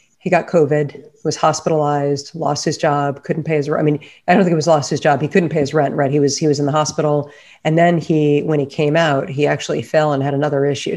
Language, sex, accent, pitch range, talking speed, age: English, female, American, 145-160 Hz, 270 wpm, 40-59